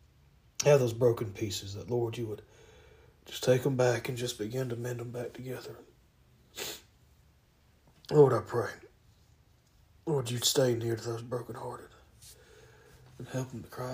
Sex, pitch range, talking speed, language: male, 100-125 Hz, 150 wpm, English